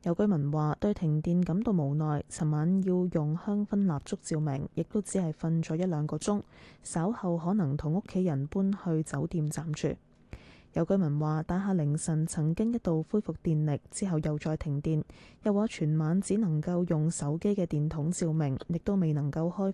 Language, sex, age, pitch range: Chinese, female, 10-29, 150-195 Hz